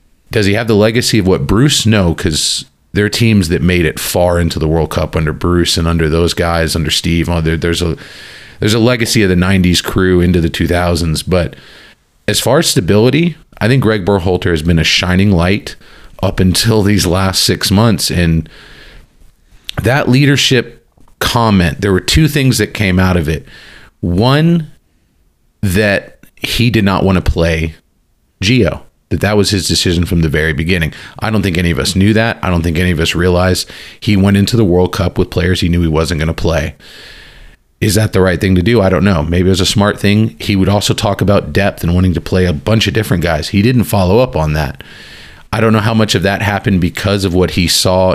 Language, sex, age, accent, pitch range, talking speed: English, male, 40-59, American, 85-105 Hz, 215 wpm